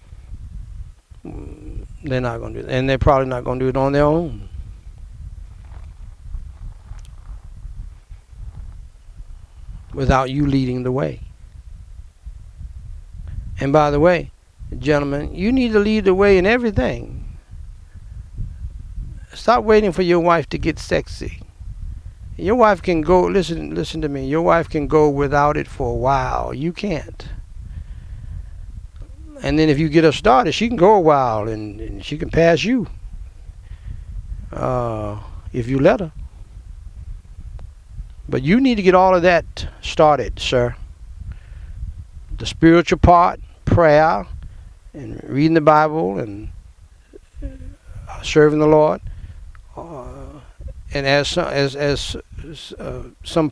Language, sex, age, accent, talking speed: English, male, 60-79, American, 125 wpm